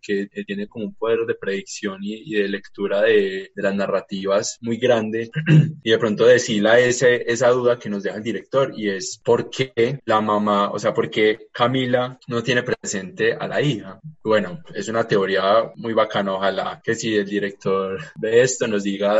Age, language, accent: 20-39, Spanish, Colombian